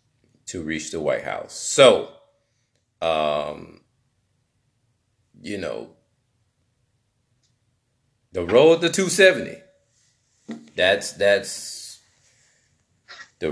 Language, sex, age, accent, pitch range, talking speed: English, male, 40-59, American, 90-120 Hz, 75 wpm